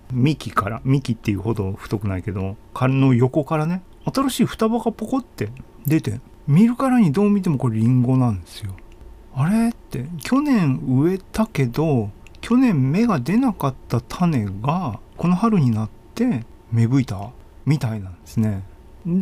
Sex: male